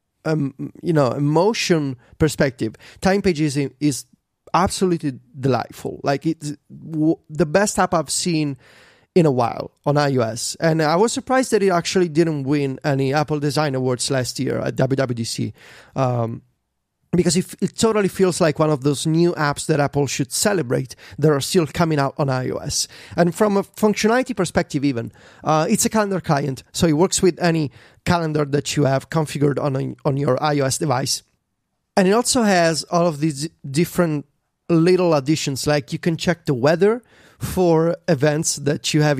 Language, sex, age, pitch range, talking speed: English, male, 30-49, 145-180 Hz, 165 wpm